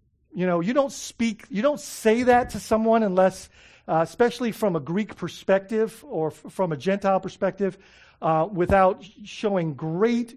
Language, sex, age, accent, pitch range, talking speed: English, male, 50-69, American, 170-205 Hz, 160 wpm